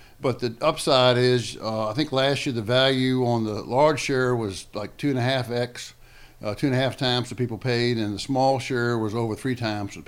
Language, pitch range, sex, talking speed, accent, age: English, 115-140 Hz, male, 195 wpm, American, 60-79